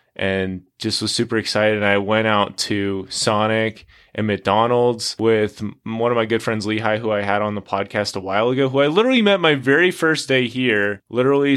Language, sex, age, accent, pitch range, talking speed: English, male, 20-39, American, 110-145 Hz, 200 wpm